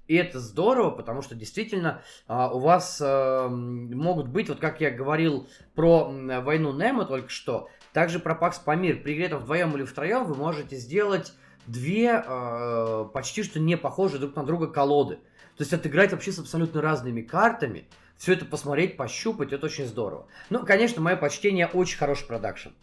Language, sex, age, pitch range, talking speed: Russian, male, 20-39, 125-170 Hz, 175 wpm